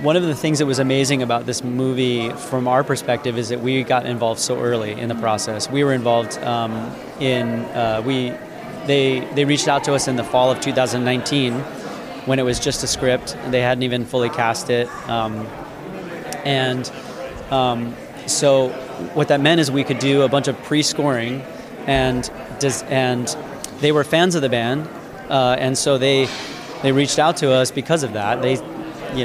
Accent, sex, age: American, male, 30-49